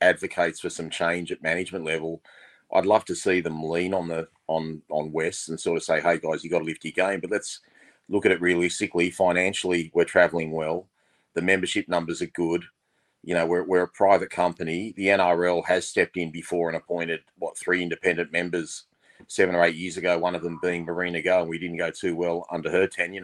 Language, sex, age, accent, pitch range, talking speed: English, male, 30-49, Australian, 85-90 Hz, 215 wpm